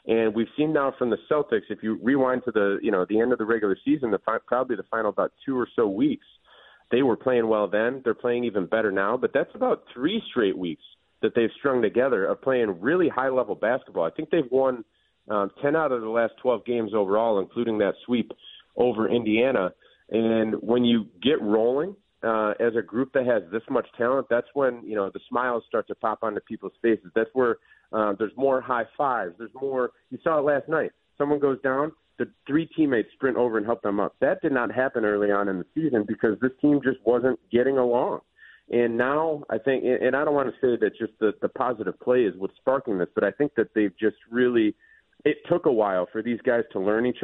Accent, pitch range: American, 110-135 Hz